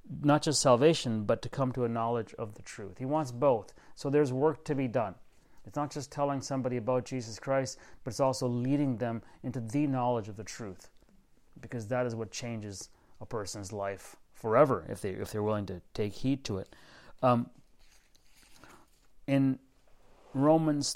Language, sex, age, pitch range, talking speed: English, male, 30-49, 105-135 Hz, 185 wpm